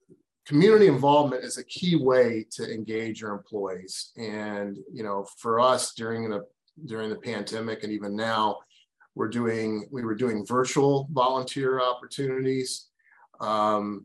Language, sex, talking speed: English, male, 135 wpm